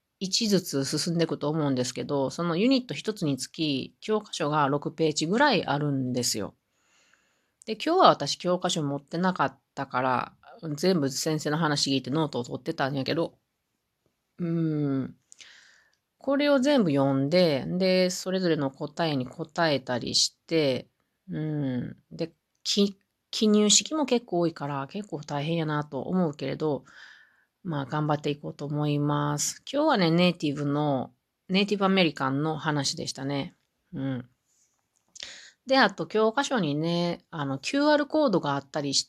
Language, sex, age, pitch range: Japanese, female, 30-49, 140-180 Hz